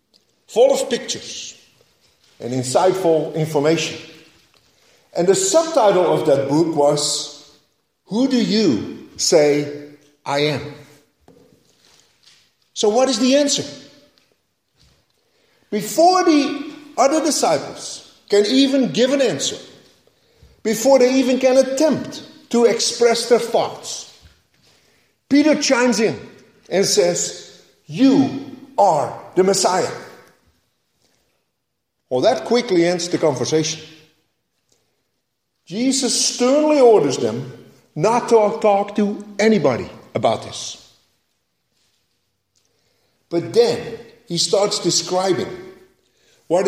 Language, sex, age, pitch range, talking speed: English, male, 50-69, 155-255 Hz, 95 wpm